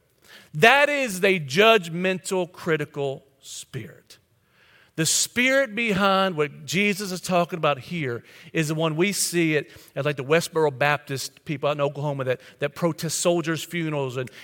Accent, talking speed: American, 150 wpm